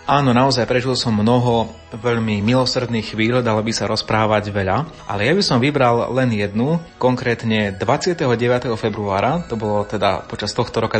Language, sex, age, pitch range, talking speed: Slovak, male, 30-49, 110-125 Hz, 160 wpm